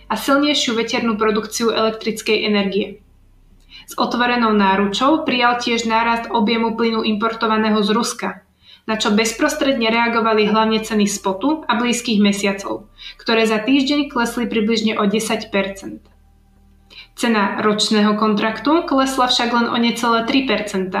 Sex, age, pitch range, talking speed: female, 20-39, 215-245 Hz, 120 wpm